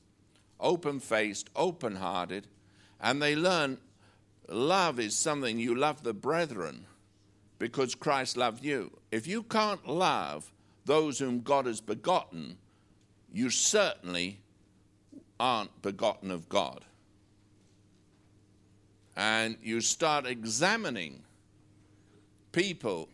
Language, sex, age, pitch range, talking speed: English, male, 60-79, 100-140 Hz, 95 wpm